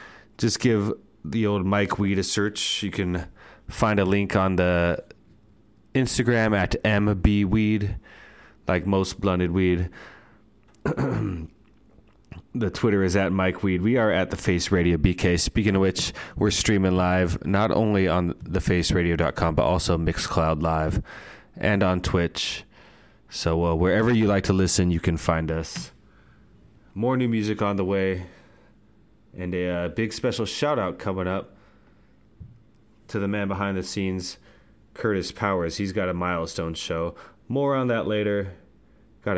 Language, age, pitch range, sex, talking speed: English, 20-39, 90-110 Hz, male, 145 wpm